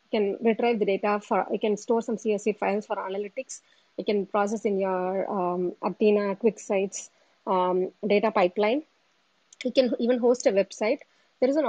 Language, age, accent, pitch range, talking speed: Tamil, 20-39, native, 195-235 Hz, 175 wpm